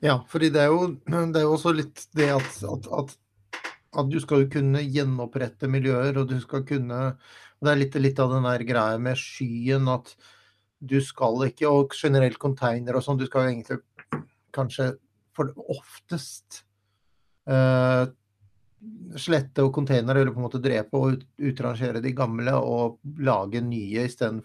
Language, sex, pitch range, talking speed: English, male, 115-135 Hz, 160 wpm